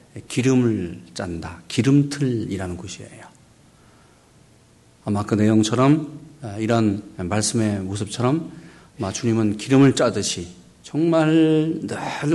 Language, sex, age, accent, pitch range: Korean, male, 50-69, native, 100-140 Hz